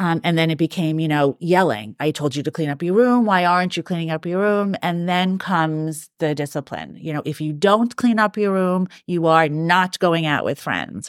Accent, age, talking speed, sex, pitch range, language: American, 30-49, 240 wpm, female, 170-225 Hz, English